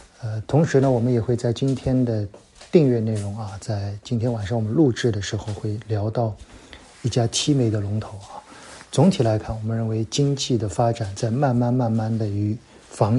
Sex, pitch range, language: male, 105-120 Hz, Chinese